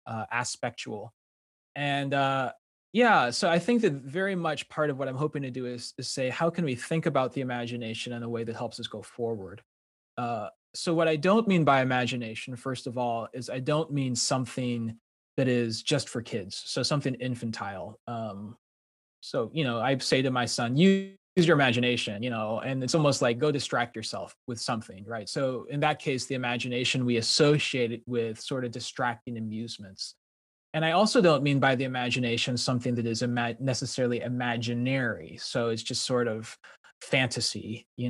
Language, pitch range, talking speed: English, 115-140 Hz, 190 wpm